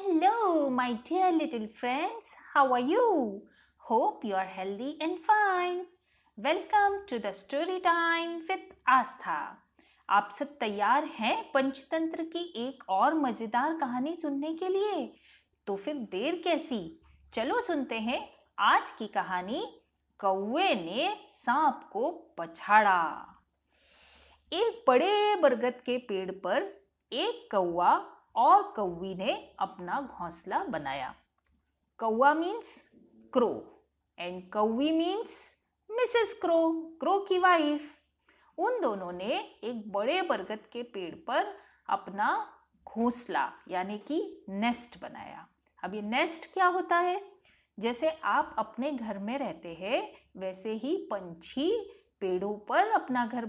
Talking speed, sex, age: 115 wpm, female, 20-39